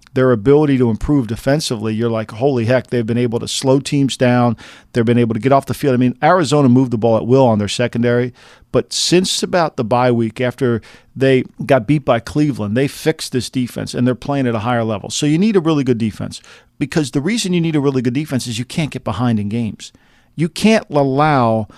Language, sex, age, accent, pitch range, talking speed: English, male, 50-69, American, 120-150 Hz, 230 wpm